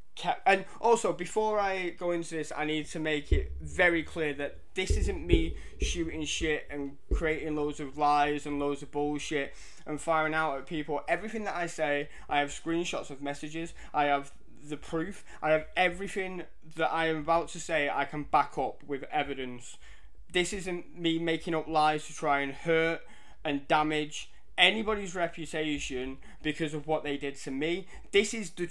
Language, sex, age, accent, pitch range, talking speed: English, male, 20-39, British, 145-175 Hz, 180 wpm